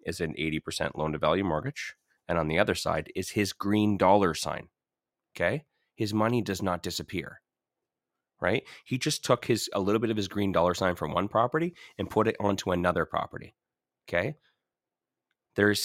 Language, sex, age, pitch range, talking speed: English, male, 30-49, 95-130 Hz, 180 wpm